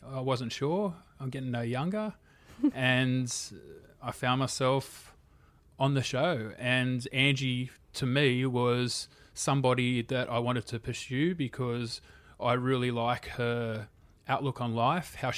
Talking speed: 135 wpm